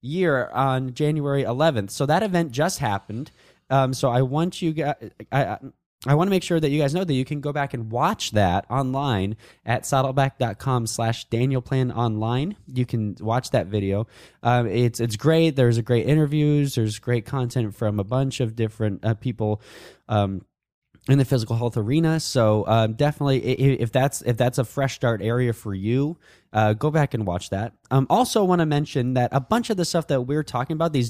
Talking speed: 205 wpm